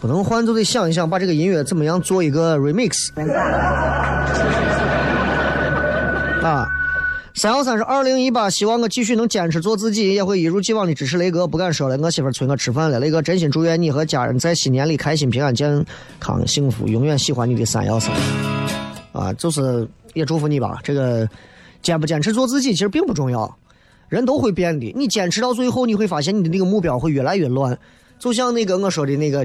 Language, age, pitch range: Chinese, 30-49, 145-215 Hz